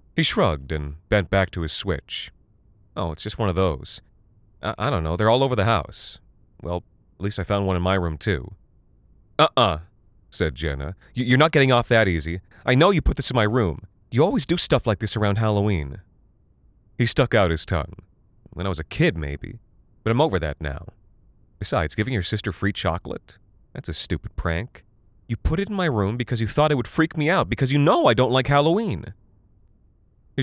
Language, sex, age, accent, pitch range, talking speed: English, male, 30-49, American, 85-115 Hz, 210 wpm